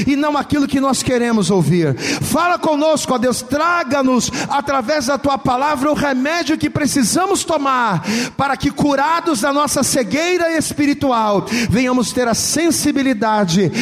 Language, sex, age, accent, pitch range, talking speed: Portuguese, male, 40-59, Brazilian, 195-275 Hz, 140 wpm